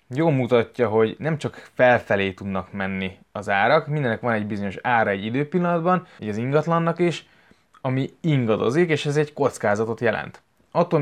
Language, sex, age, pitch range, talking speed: Hungarian, male, 20-39, 115-150 Hz, 160 wpm